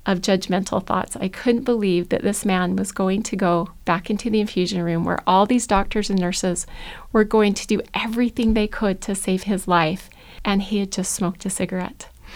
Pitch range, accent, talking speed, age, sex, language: 190-225 Hz, American, 205 wpm, 30-49, female, English